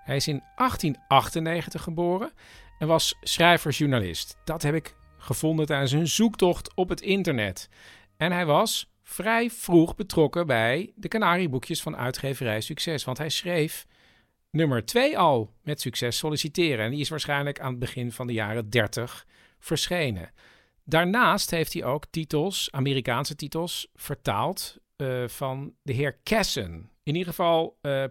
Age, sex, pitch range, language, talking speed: 50-69, male, 120-170 Hz, Dutch, 145 wpm